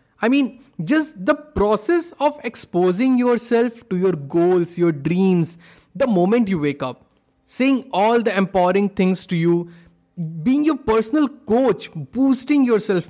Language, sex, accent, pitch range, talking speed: Hindi, male, native, 160-225 Hz, 140 wpm